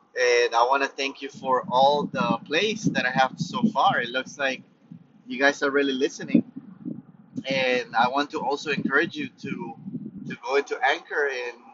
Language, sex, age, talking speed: English, male, 30-49, 185 wpm